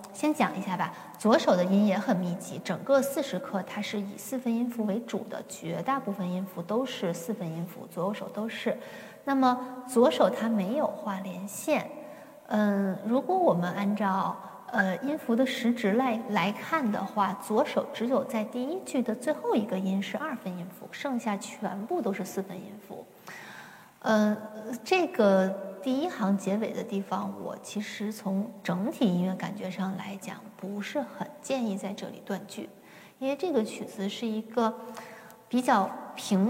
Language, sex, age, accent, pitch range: Chinese, female, 20-39, native, 195-250 Hz